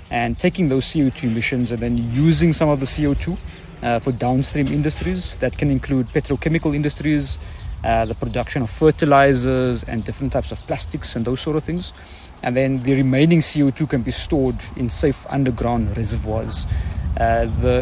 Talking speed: 170 wpm